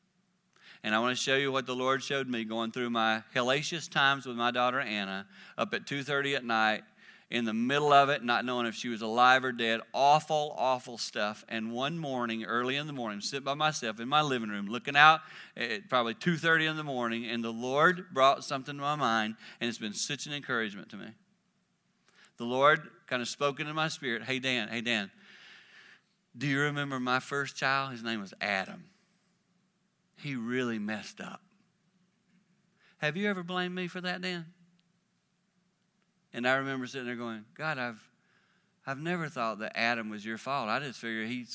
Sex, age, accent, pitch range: male, 40-59, American, 120-180 Hz